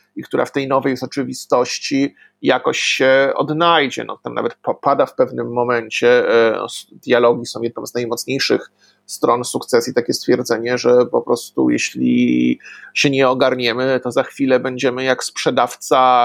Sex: male